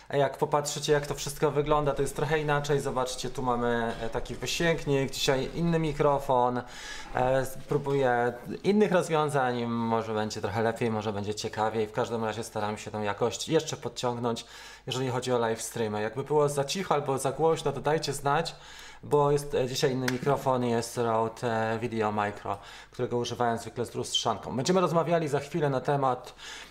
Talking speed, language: 165 wpm, Polish